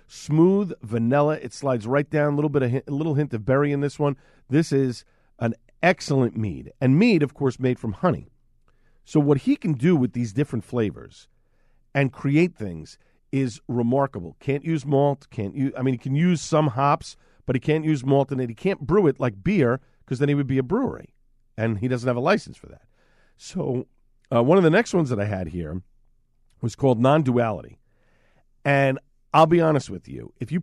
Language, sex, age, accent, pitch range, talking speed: English, male, 50-69, American, 120-155 Hz, 210 wpm